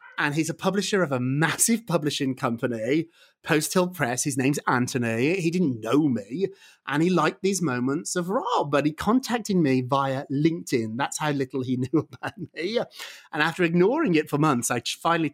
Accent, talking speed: British, 185 wpm